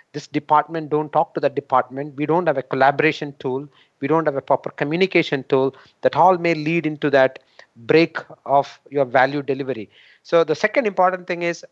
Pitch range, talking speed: 140-170 Hz, 190 wpm